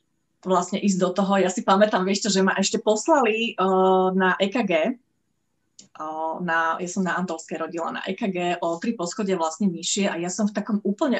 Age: 30-49